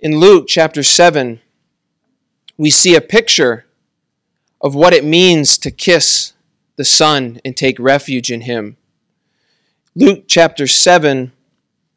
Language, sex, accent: Korean, male, American